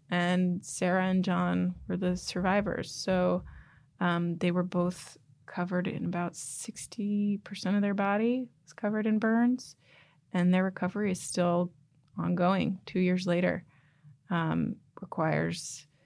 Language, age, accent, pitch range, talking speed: English, 20-39, American, 155-190 Hz, 125 wpm